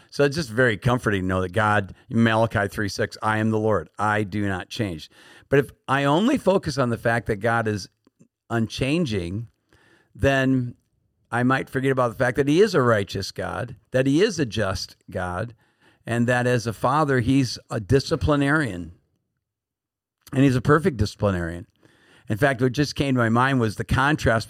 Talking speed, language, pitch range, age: 180 wpm, English, 100-125 Hz, 50-69